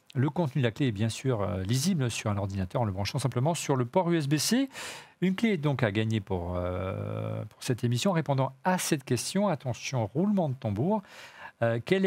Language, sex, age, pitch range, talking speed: French, male, 50-69, 120-180 Hz, 210 wpm